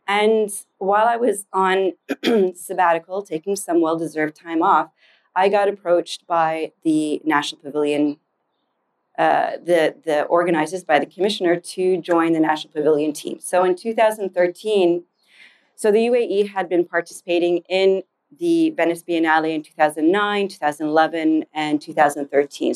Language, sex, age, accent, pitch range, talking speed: English, female, 30-49, American, 155-190 Hz, 130 wpm